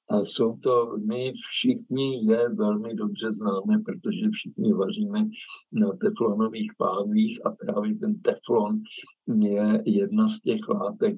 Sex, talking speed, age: male, 130 wpm, 60-79